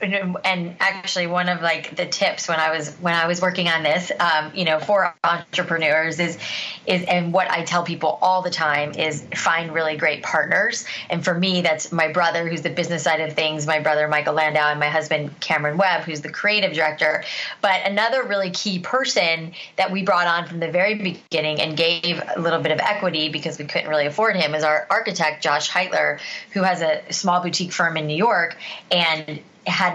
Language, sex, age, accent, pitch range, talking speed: English, female, 20-39, American, 160-190 Hz, 205 wpm